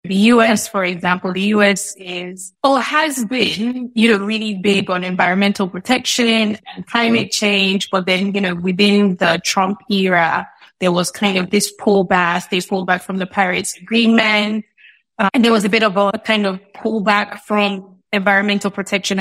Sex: female